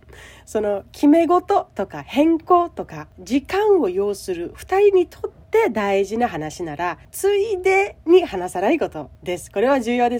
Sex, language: female, Japanese